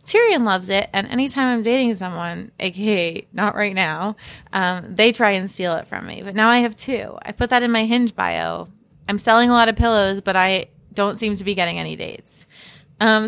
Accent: American